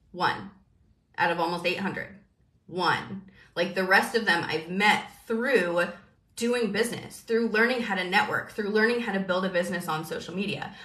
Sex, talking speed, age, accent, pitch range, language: female, 170 wpm, 20-39, American, 180-230 Hz, English